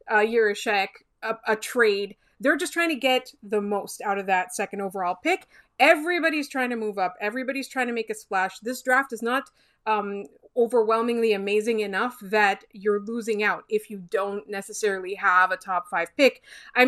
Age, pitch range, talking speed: 30-49, 215-280 Hz, 185 wpm